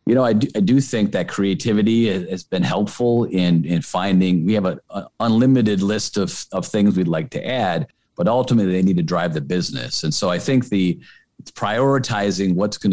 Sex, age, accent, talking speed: male, 40-59, American, 205 wpm